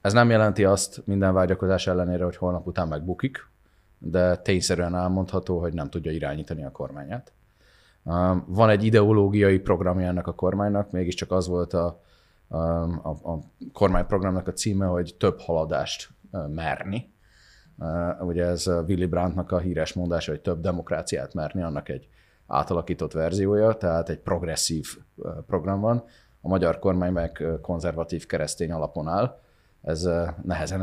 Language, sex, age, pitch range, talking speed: Hungarian, male, 30-49, 85-100 Hz, 135 wpm